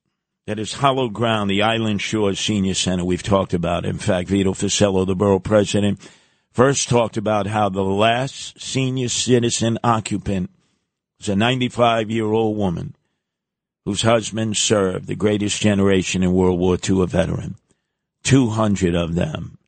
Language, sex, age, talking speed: English, male, 50-69, 145 wpm